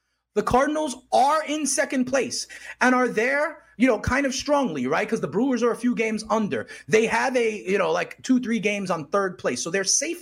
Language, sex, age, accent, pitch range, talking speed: English, male, 30-49, American, 220-285 Hz, 225 wpm